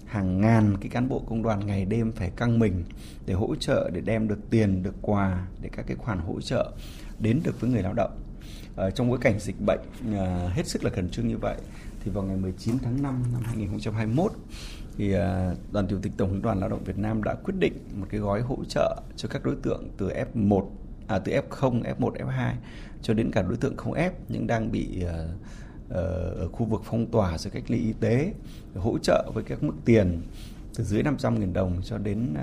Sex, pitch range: male, 95-115 Hz